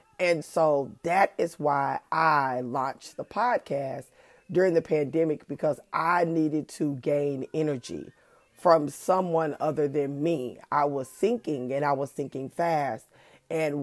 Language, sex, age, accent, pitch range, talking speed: English, female, 30-49, American, 140-175 Hz, 140 wpm